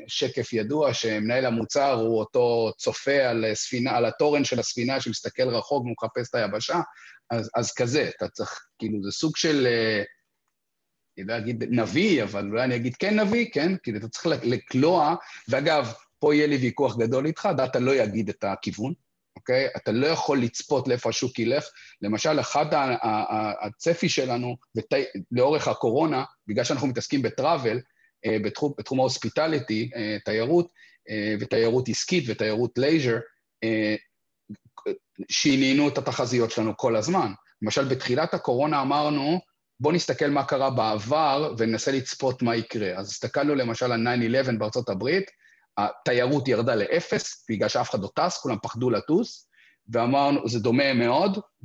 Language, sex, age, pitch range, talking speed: Hebrew, male, 40-59, 115-150 Hz, 135 wpm